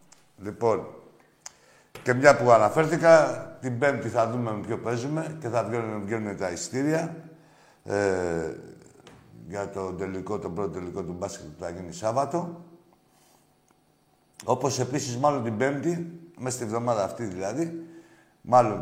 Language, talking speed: Greek, 130 wpm